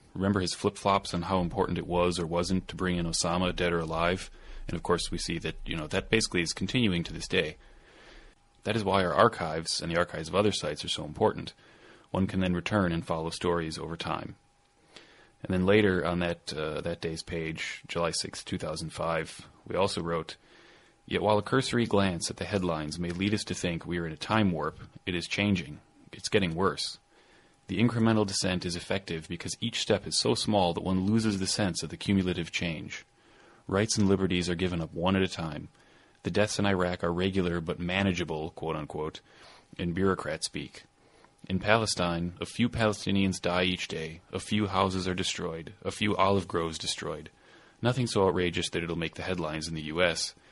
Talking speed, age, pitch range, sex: 195 wpm, 30-49, 85-100 Hz, male